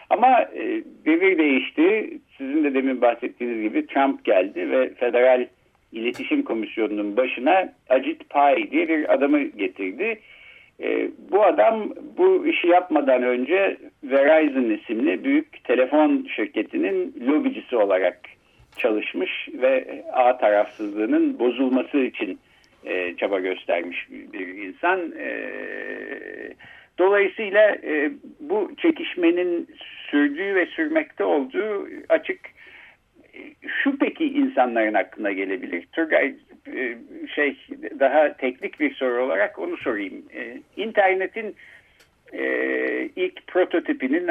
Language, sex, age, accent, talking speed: Turkish, male, 60-79, native, 95 wpm